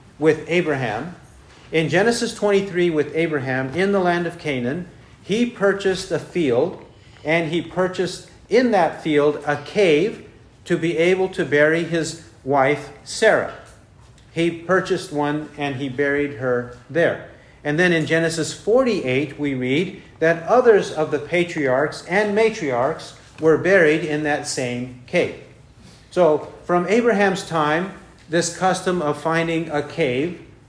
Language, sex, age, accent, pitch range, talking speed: English, male, 50-69, American, 140-175 Hz, 135 wpm